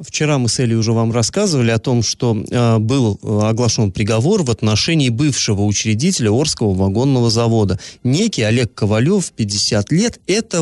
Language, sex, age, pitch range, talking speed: Russian, male, 30-49, 110-150 Hz, 155 wpm